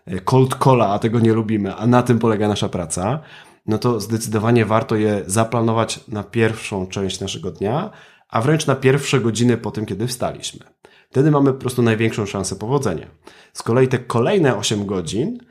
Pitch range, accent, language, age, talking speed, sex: 105-130 Hz, native, Polish, 30-49, 175 wpm, male